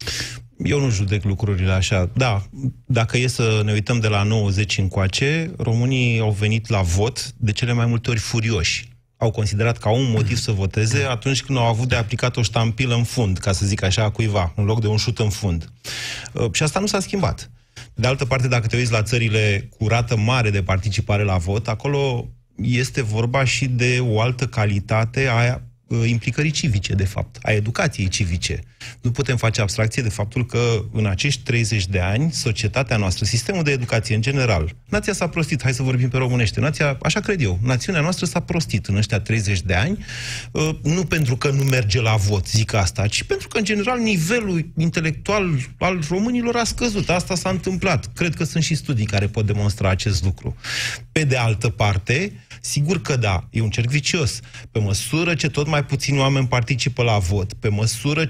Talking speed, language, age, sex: 190 wpm, Romanian, 30-49, male